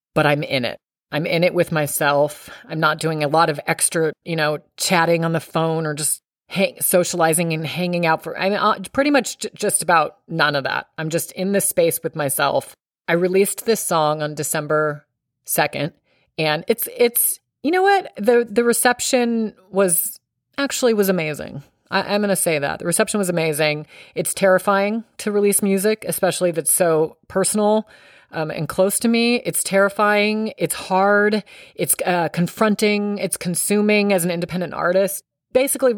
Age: 30-49